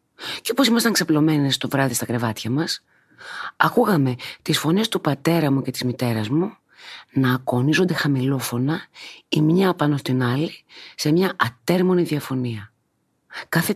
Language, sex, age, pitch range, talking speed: Greek, female, 30-49, 125-170 Hz, 140 wpm